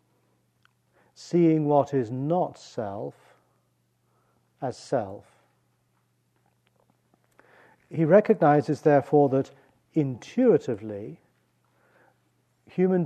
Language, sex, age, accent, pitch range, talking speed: English, male, 40-59, British, 115-145 Hz, 60 wpm